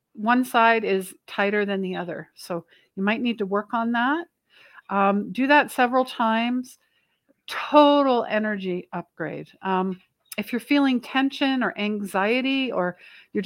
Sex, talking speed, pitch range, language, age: female, 145 wpm, 185-245 Hz, English, 60-79